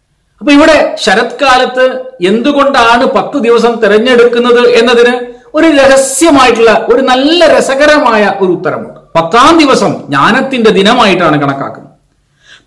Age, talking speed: 40-59, 95 wpm